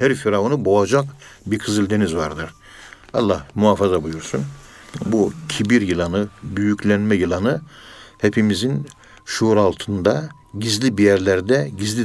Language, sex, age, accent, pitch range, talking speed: Turkish, male, 60-79, native, 100-130 Hz, 105 wpm